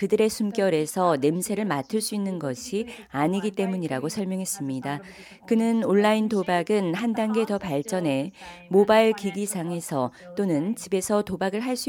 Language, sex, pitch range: Korean, female, 170-220 Hz